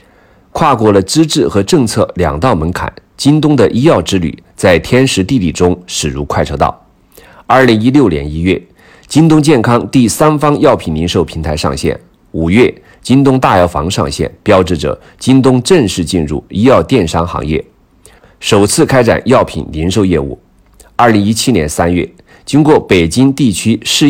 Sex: male